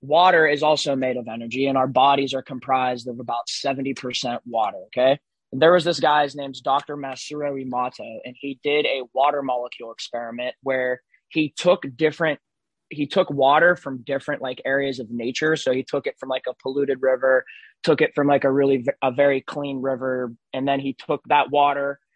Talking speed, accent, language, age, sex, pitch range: 185 wpm, American, English, 20-39, male, 125-145 Hz